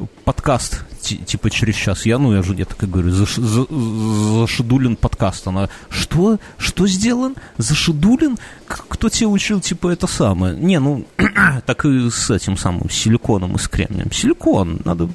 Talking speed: 160 wpm